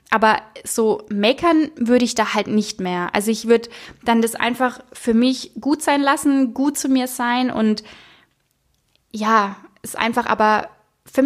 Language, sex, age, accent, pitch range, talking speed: German, female, 20-39, German, 220-255 Hz, 160 wpm